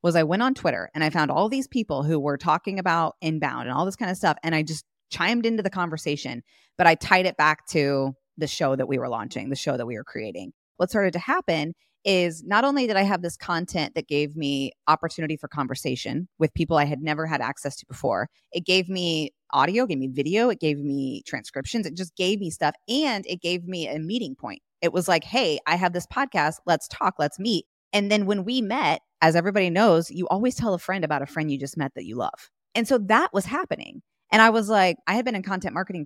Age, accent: 20-39, American